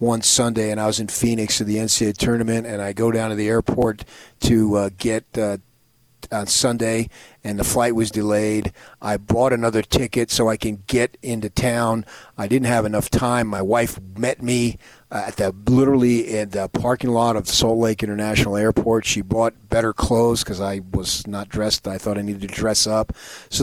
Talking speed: 195 wpm